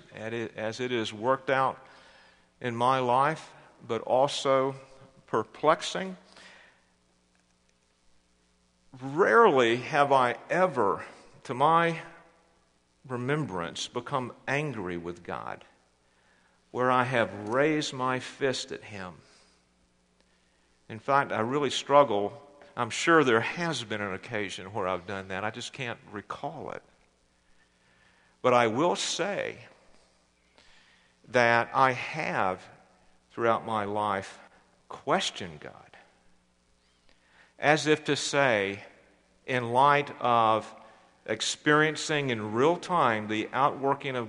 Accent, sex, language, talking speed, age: American, male, English, 105 wpm, 50-69